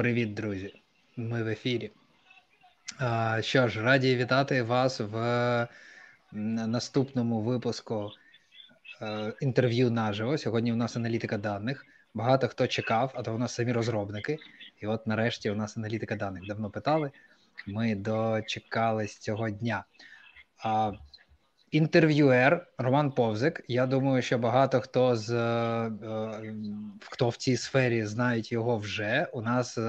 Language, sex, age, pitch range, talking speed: Ukrainian, male, 20-39, 110-130 Hz, 120 wpm